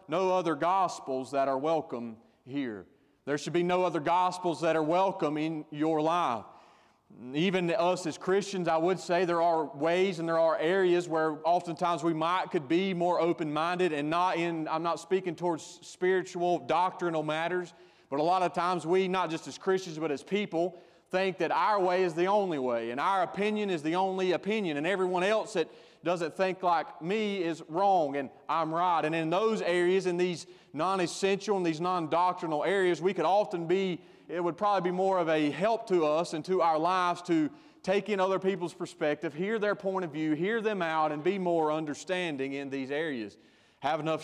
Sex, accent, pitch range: male, American, 155-185 Hz